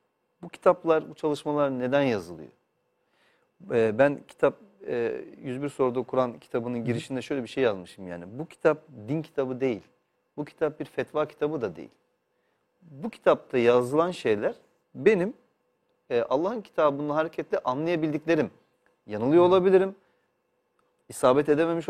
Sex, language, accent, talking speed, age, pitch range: male, Turkish, native, 120 wpm, 40-59, 125-165 Hz